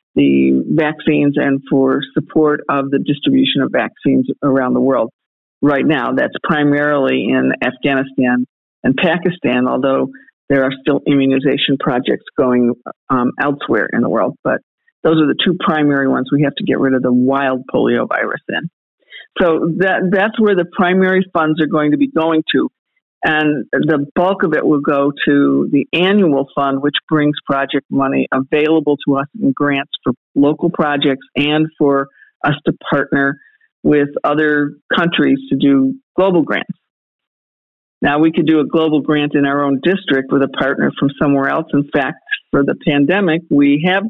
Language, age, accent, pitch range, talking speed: English, 50-69, American, 135-160 Hz, 165 wpm